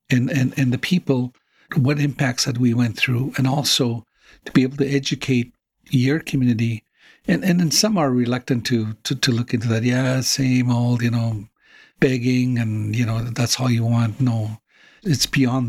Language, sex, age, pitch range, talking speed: English, male, 60-79, 120-135 Hz, 185 wpm